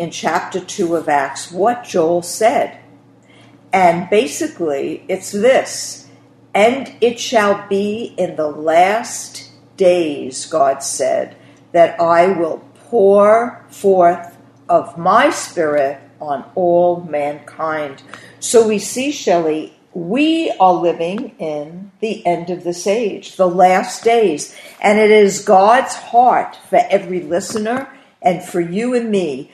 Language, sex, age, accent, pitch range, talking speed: English, female, 50-69, American, 170-220 Hz, 125 wpm